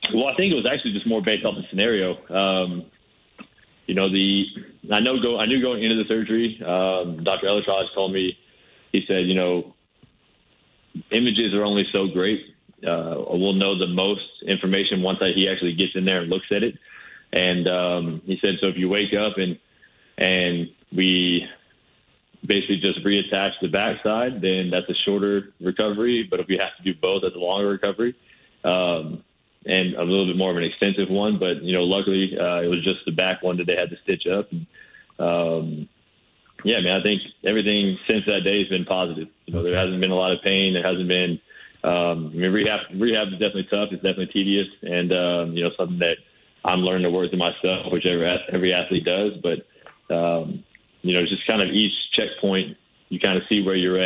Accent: American